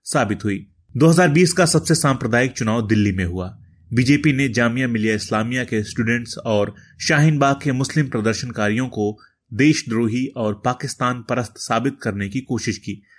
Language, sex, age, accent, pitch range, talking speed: Hindi, male, 30-49, native, 110-140 Hz, 145 wpm